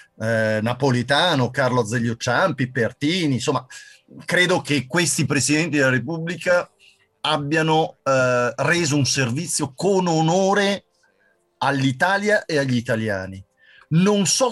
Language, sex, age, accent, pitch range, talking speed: Italian, male, 50-69, native, 120-180 Hz, 110 wpm